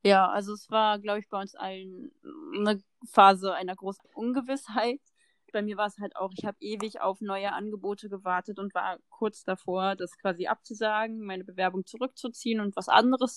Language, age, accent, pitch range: German, 20-39, German, 195-240 Hz